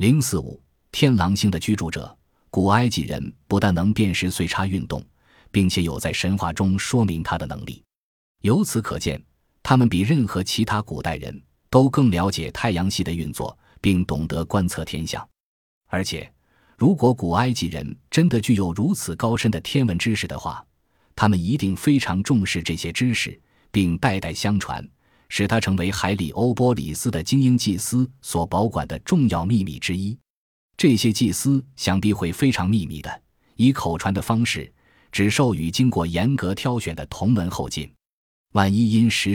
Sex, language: male, Chinese